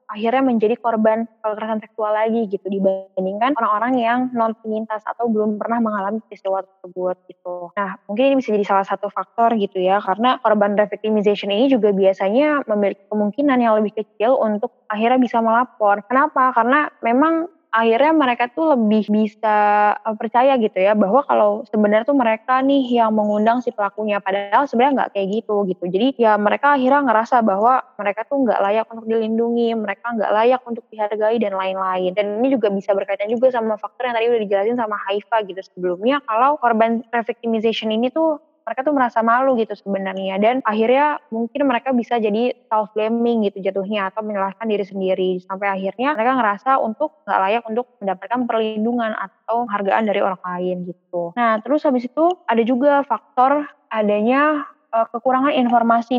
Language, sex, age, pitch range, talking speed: Indonesian, female, 20-39, 205-250 Hz, 165 wpm